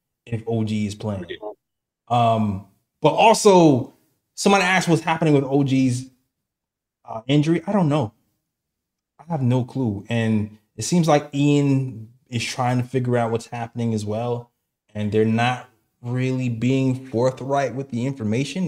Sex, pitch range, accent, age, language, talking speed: male, 110-135 Hz, American, 20-39, English, 145 wpm